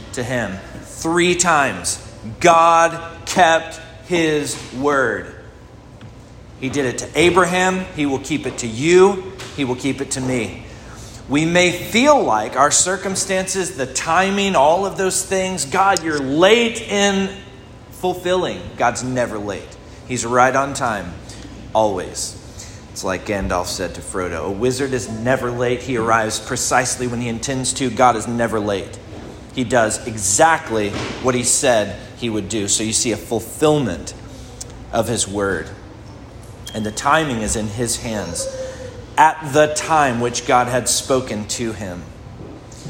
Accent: American